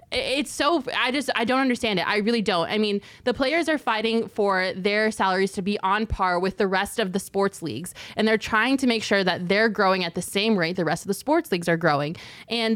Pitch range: 195-235 Hz